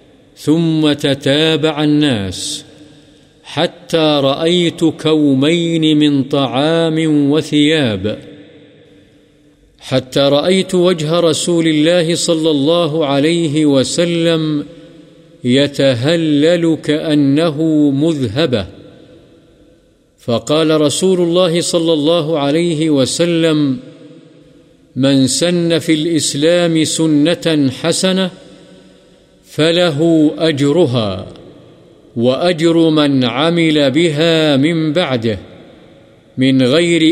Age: 50-69